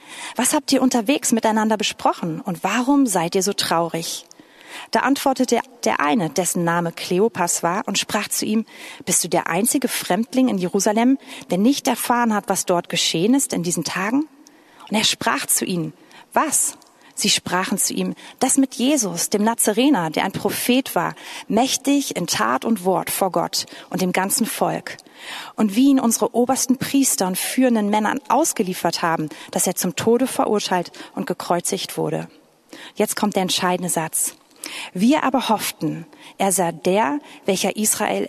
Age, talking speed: 40-59, 165 wpm